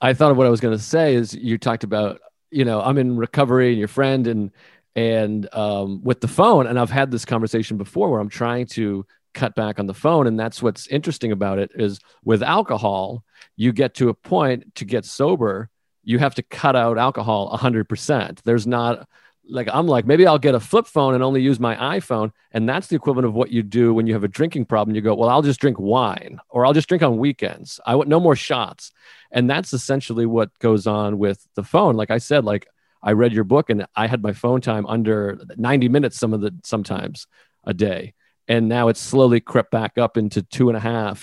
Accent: American